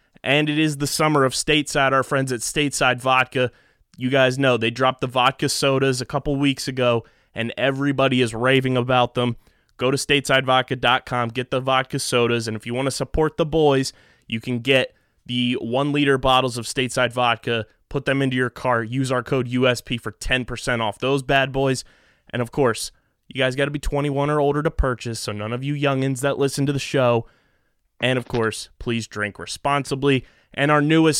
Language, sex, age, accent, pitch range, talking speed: English, male, 20-39, American, 120-140 Hz, 195 wpm